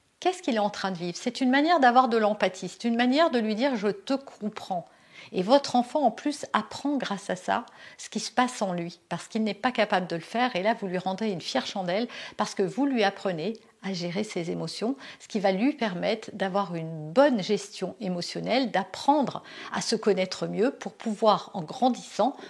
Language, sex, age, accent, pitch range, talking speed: French, female, 50-69, French, 195-265 Hz, 215 wpm